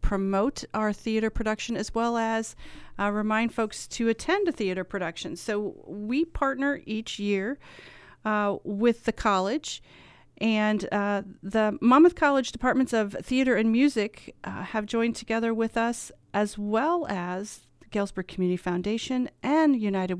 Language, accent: English, American